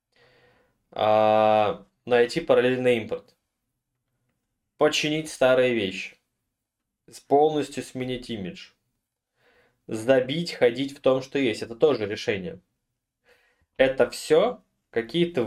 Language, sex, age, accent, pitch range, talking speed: Russian, male, 20-39, native, 105-130 Hz, 80 wpm